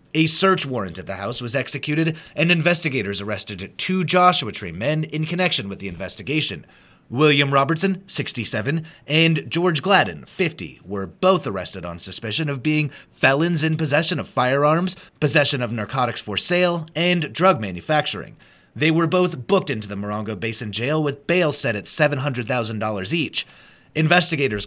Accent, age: American, 30-49